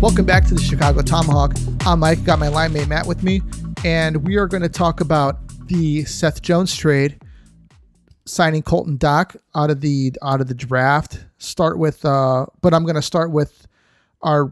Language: English